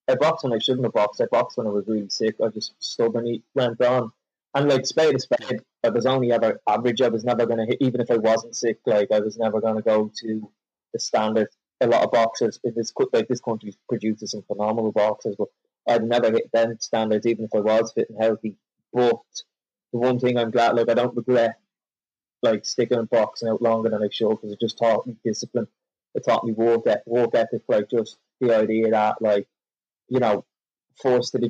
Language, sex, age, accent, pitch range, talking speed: English, male, 20-39, British, 110-120 Hz, 220 wpm